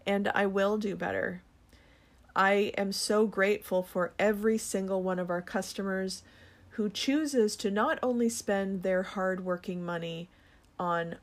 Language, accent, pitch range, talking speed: English, American, 175-215 Hz, 145 wpm